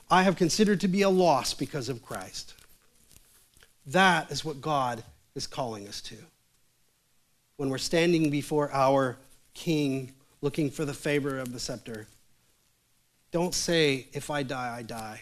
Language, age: English, 40-59